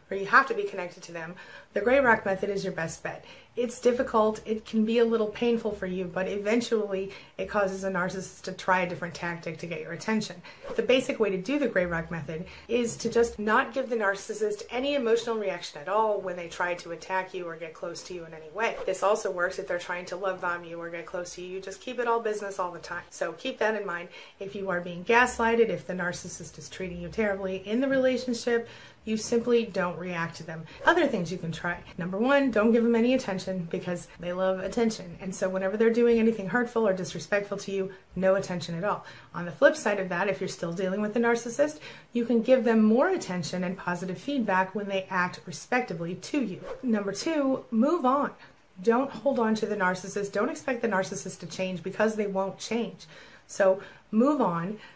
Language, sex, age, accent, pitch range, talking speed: English, female, 30-49, American, 180-230 Hz, 225 wpm